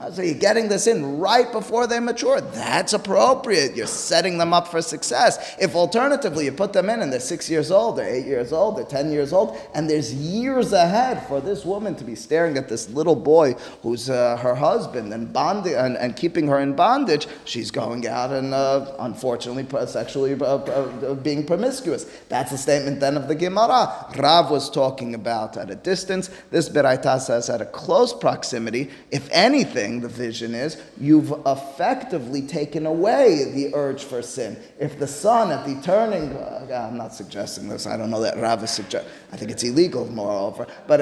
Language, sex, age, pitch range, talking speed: English, male, 30-49, 135-180 Hz, 195 wpm